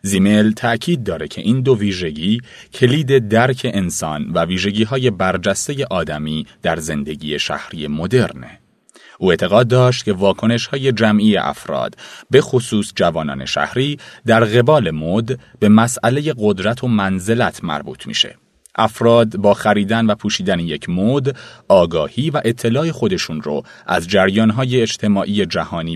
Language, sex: Persian, male